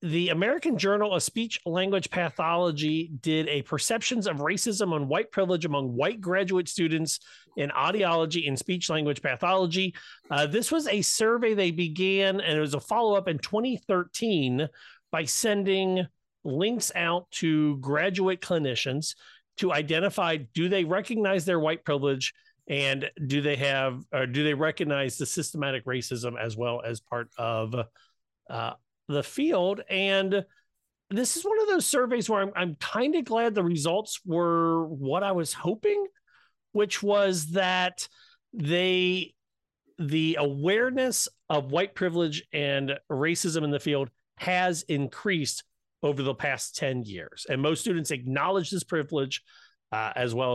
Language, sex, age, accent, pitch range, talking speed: English, male, 40-59, American, 140-195 Hz, 145 wpm